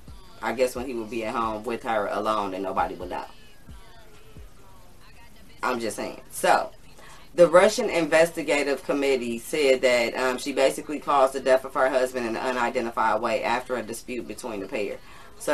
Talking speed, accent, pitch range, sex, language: 175 wpm, American, 125-145 Hz, female, English